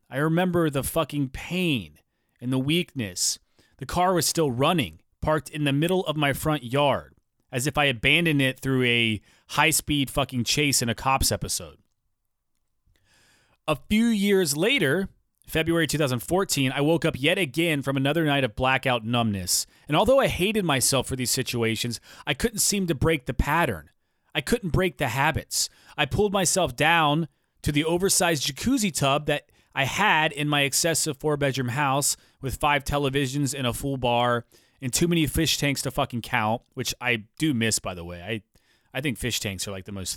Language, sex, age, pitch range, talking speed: English, male, 30-49, 120-155 Hz, 180 wpm